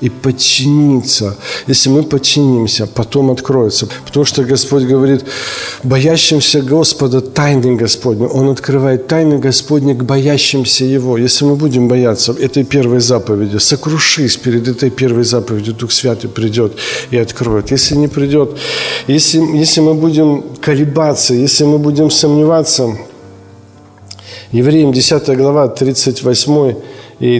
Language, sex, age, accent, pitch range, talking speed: Ukrainian, male, 50-69, native, 115-140 Hz, 125 wpm